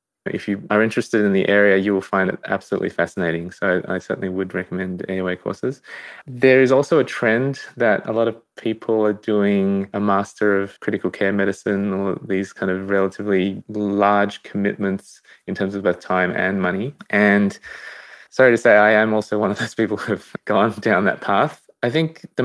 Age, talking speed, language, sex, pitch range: 20-39, 190 wpm, English, male, 95-110 Hz